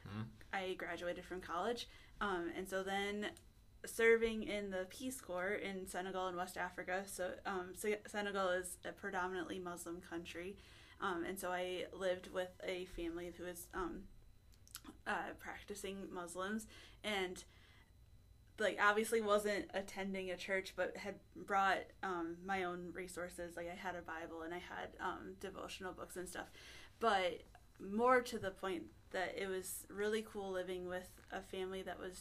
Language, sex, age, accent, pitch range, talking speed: English, female, 20-39, American, 180-200 Hz, 155 wpm